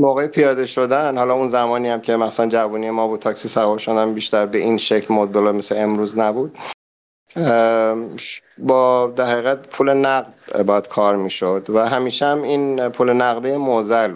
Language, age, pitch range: Persian, 50-69, 105-125 Hz